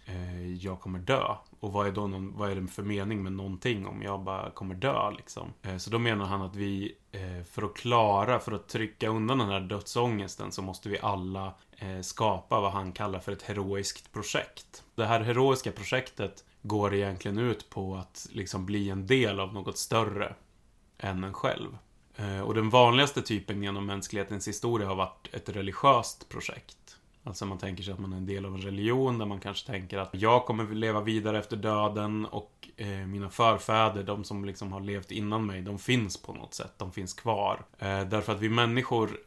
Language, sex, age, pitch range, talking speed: Swedish, male, 30-49, 95-110 Hz, 185 wpm